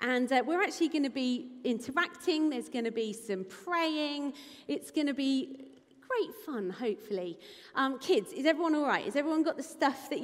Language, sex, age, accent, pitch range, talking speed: English, female, 40-59, British, 240-330 Hz, 195 wpm